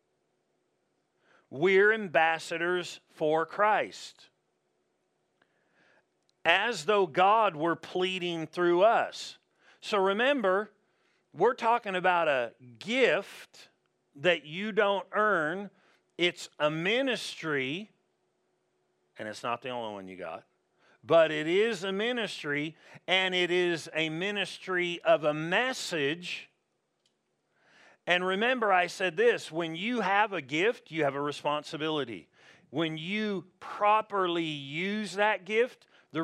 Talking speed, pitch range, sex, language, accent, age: 110 wpm, 150-195 Hz, male, English, American, 50-69